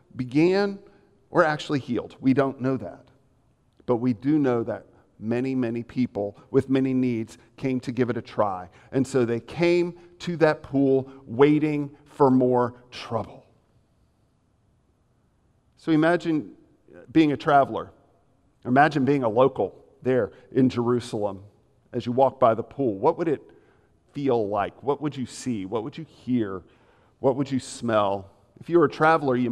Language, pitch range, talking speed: English, 110-135 Hz, 155 wpm